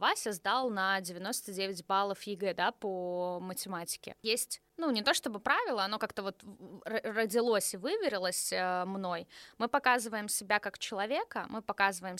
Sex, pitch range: female, 190-245 Hz